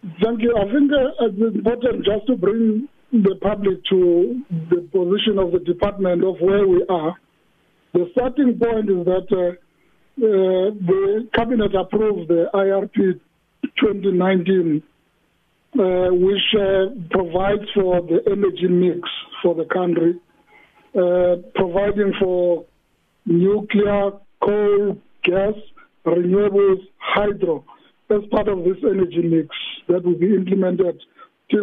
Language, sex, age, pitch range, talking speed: English, male, 50-69, 180-210 Hz, 125 wpm